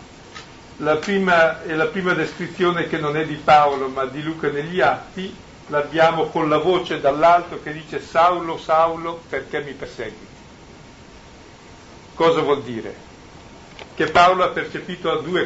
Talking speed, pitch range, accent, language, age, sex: 140 wpm, 145-180 Hz, native, Italian, 50-69, male